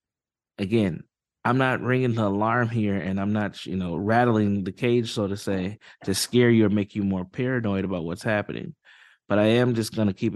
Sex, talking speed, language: male, 210 wpm, English